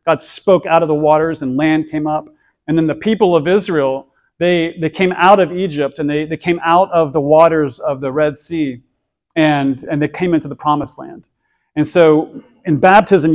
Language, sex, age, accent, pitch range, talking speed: English, male, 40-59, American, 150-180 Hz, 205 wpm